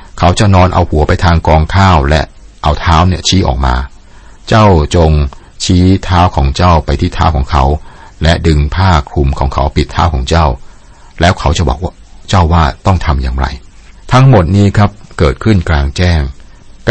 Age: 60-79